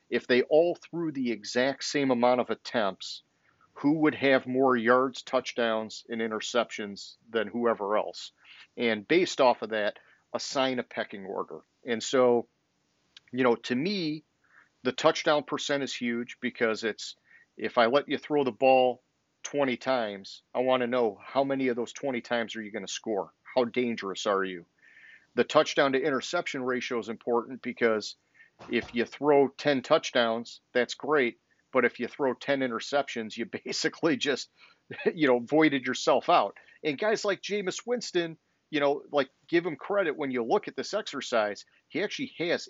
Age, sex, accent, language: 40-59, male, American, English